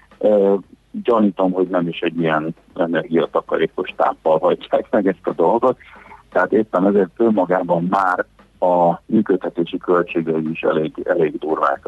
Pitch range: 85-100 Hz